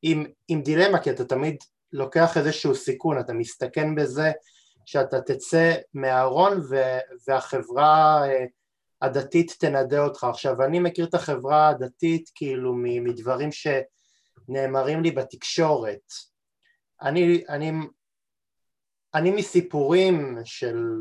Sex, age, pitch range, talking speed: male, 20-39, 130-170 Hz, 100 wpm